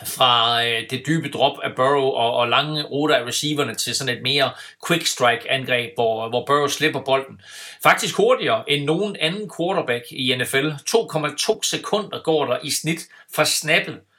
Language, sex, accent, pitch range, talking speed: Danish, male, native, 125-150 Hz, 175 wpm